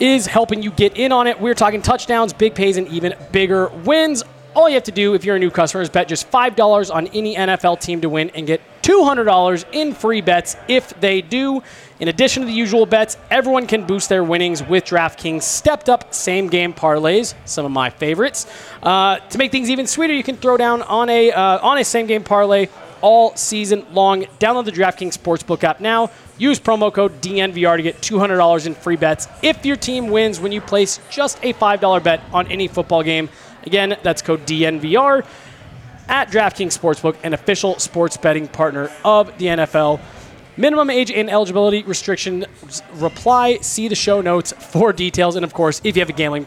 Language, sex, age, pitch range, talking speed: English, male, 20-39, 170-225 Hz, 195 wpm